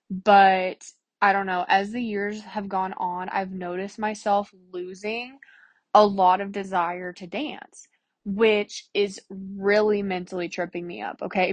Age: 20-39